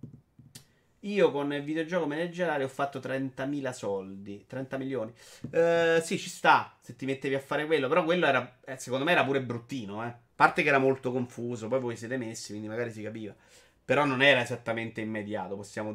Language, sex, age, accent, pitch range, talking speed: Italian, male, 30-49, native, 115-140 Hz, 190 wpm